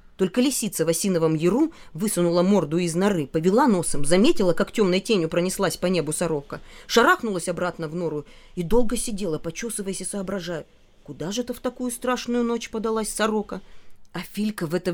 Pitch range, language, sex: 165-240 Hz, Russian, female